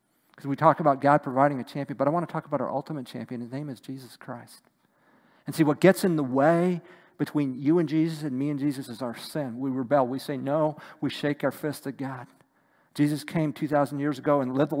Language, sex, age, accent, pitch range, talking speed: English, male, 50-69, American, 130-155 Hz, 240 wpm